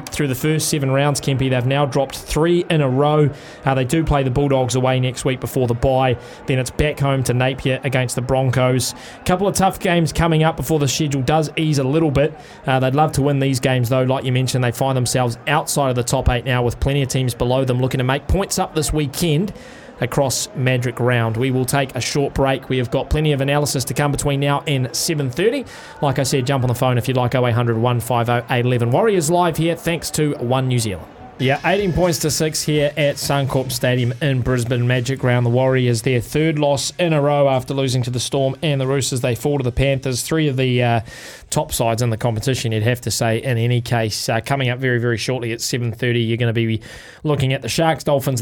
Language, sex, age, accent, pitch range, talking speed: English, male, 20-39, Australian, 125-145 Hz, 240 wpm